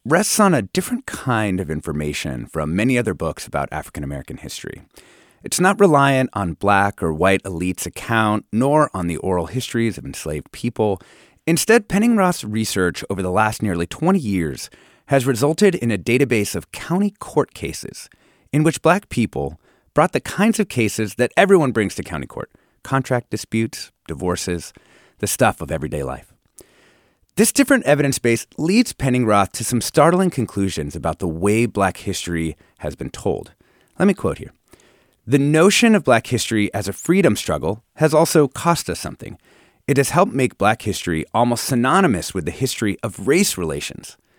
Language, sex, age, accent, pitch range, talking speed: English, male, 30-49, American, 95-150 Hz, 165 wpm